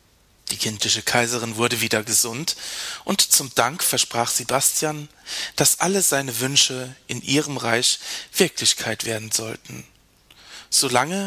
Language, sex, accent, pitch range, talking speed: German, male, German, 110-135 Hz, 120 wpm